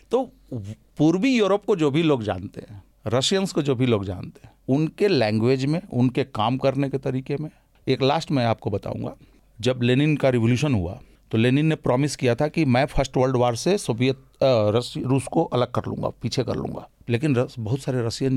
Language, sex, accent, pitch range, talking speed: Hindi, male, native, 110-140 Hz, 195 wpm